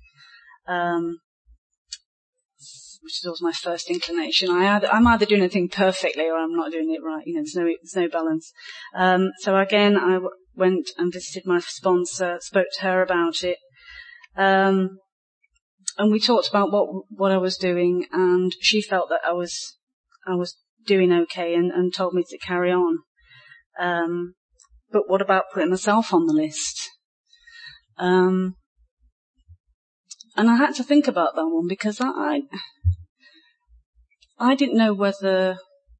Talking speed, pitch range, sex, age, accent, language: 155 wpm, 175-235 Hz, female, 30-49, British, English